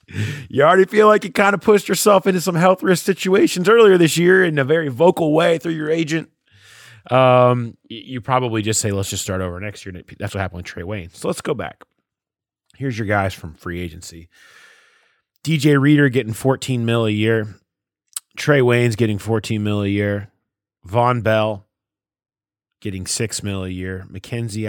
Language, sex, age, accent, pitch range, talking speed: English, male, 30-49, American, 95-130 Hz, 180 wpm